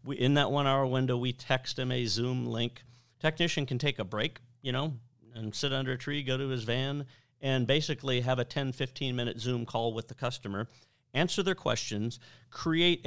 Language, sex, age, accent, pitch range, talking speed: English, male, 50-69, American, 120-145 Hz, 200 wpm